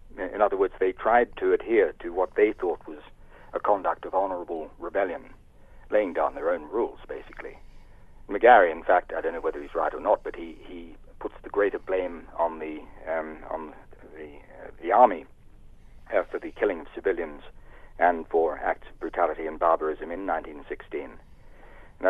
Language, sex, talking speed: English, male, 180 wpm